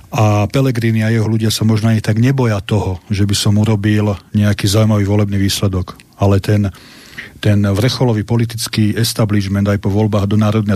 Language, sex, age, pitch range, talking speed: Slovak, male, 40-59, 100-115 Hz, 165 wpm